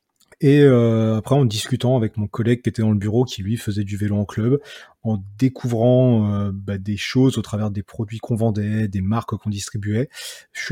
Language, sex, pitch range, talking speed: French, male, 105-125 Hz, 205 wpm